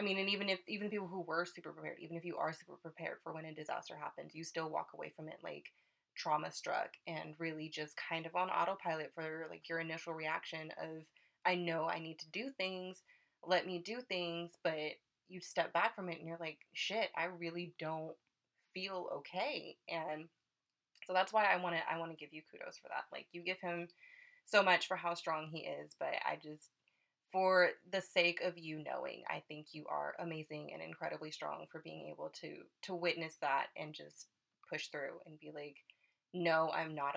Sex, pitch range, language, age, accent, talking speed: female, 155-180 Hz, English, 20-39, American, 210 wpm